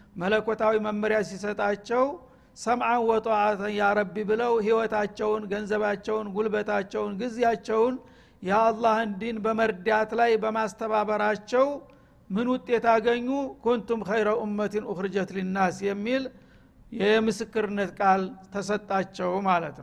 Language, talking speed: Amharic, 90 wpm